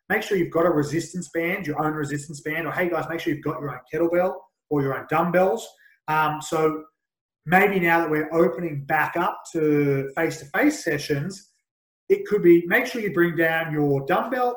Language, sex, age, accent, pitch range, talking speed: English, male, 20-39, Australian, 150-180 Hz, 195 wpm